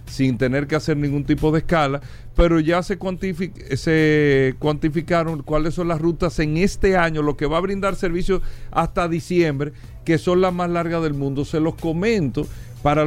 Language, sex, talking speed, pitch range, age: Spanish, male, 180 wpm, 145-175 Hz, 50-69